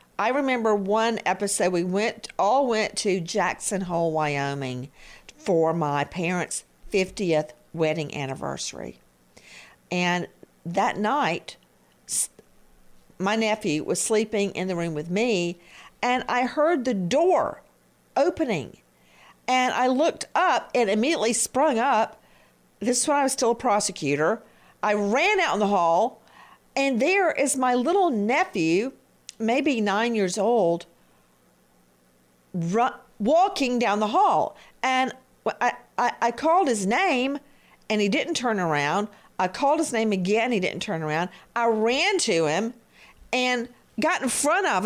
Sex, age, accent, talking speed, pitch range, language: female, 50-69, American, 135 wpm, 175-265 Hz, English